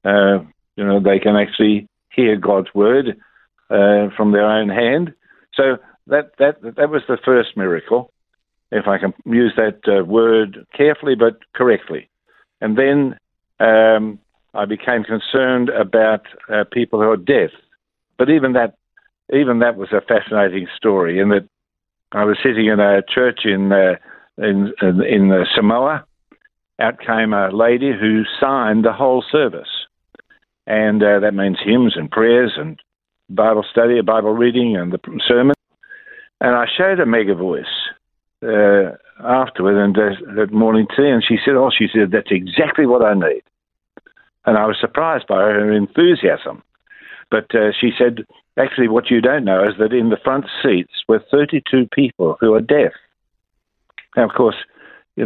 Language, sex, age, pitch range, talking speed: English, male, 50-69, 105-130 Hz, 160 wpm